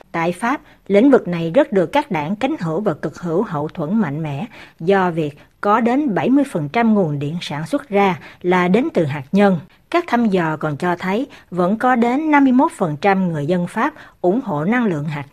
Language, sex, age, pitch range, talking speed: Vietnamese, female, 60-79, 170-220 Hz, 200 wpm